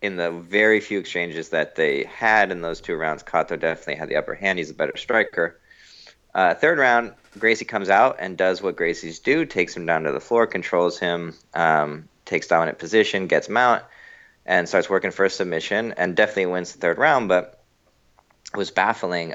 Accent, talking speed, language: American, 200 wpm, English